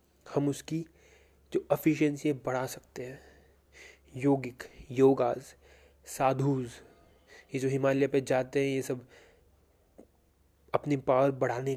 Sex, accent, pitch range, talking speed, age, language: male, native, 125-140 Hz, 110 wpm, 20-39, Hindi